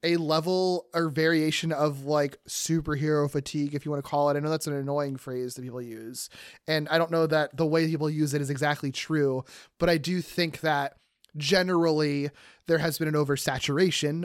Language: English